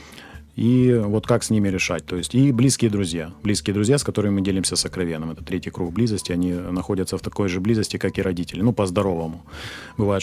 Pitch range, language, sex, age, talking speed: 90-115 Hz, Ukrainian, male, 30-49, 200 wpm